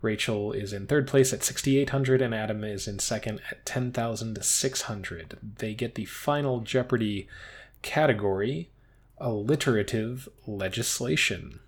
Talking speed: 115 wpm